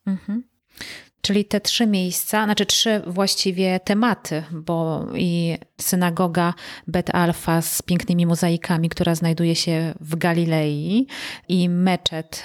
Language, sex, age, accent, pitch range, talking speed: Polish, female, 30-49, native, 165-190 Hz, 115 wpm